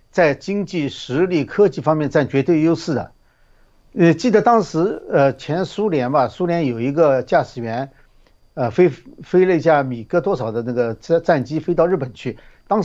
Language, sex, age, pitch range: Chinese, male, 50-69, 135-200 Hz